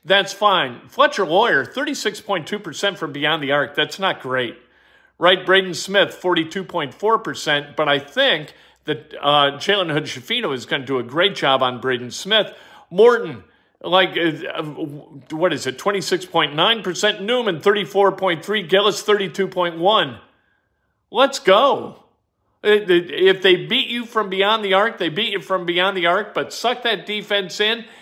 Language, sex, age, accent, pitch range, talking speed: English, male, 50-69, American, 155-210 Hz, 145 wpm